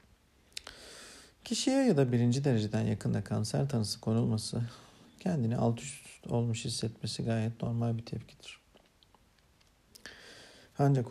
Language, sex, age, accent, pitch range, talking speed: Turkish, male, 50-69, native, 110-120 Hz, 105 wpm